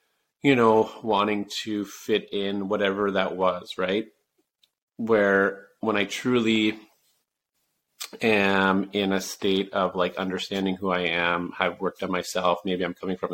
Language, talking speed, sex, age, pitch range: English, 145 wpm, male, 30-49, 95-105 Hz